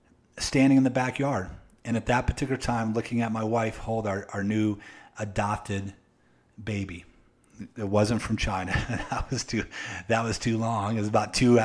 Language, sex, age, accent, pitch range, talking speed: English, male, 30-49, American, 105-130 Hz, 175 wpm